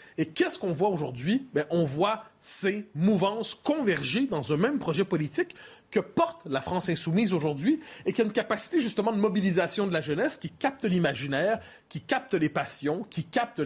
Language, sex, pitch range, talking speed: French, male, 155-210 Hz, 185 wpm